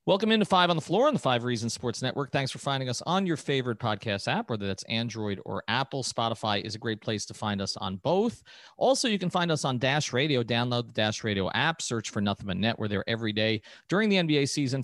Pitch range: 115-165 Hz